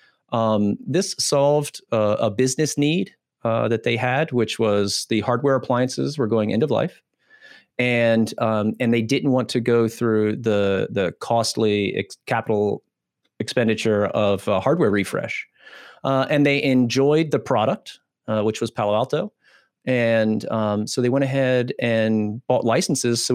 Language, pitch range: English, 110-140 Hz